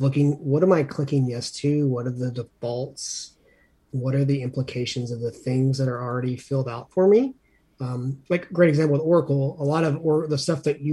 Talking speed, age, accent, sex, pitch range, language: 220 wpm, 30-49, American, male, 130-155 Hz, English